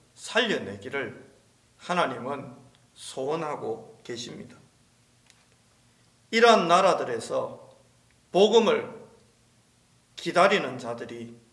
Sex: male